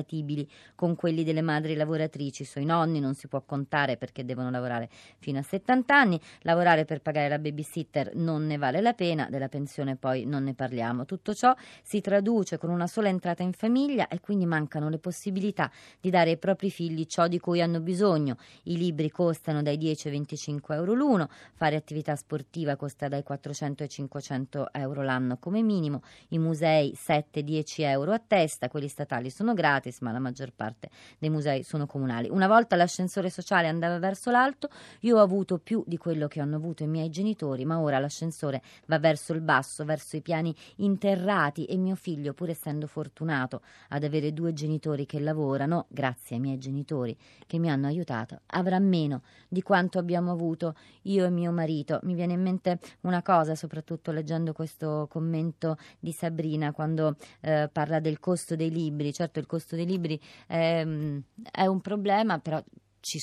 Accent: native